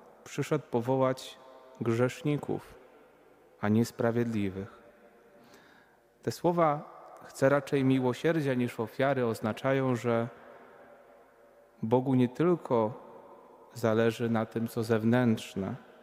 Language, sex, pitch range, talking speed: Polish, male, 115-135 Hz, 85 wpm